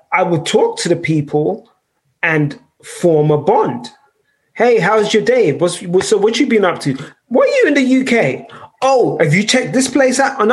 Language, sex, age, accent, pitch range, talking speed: English, male, 20-39, British, 160-255 Hz, 205 wpm